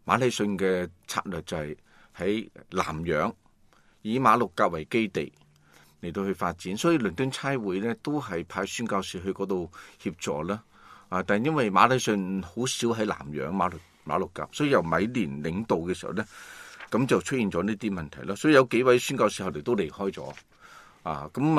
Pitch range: 95-135 Hz